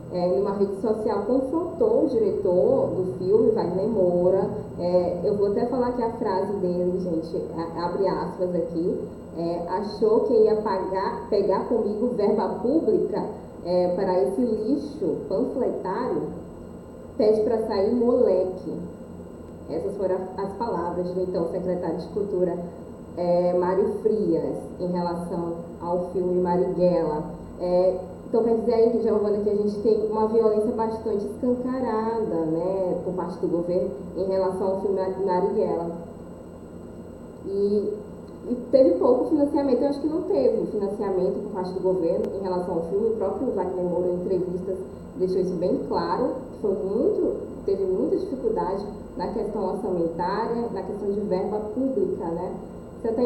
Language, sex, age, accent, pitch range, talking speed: Portuguese, female, 10-29, Brazilian, 180-225 Hz, 145 wpm